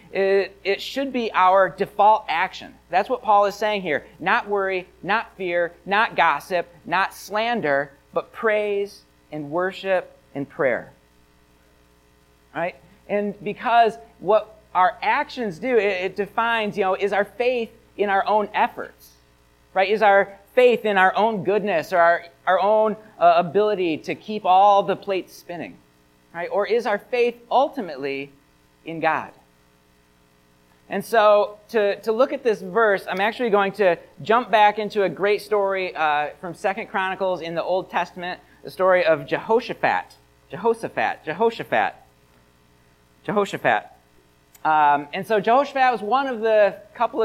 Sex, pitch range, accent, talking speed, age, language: male, 165-215 Hz, American, 145 wpm, 40-59, English